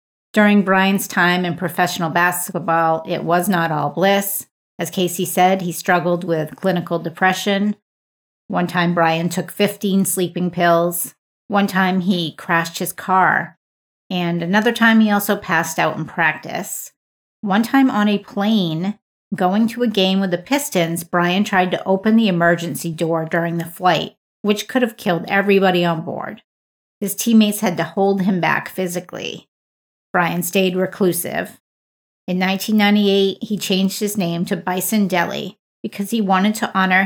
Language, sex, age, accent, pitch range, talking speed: English, female, 40-59, American, 175-205 Hz, 155 wpm